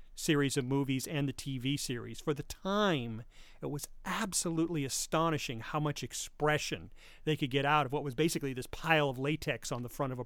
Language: English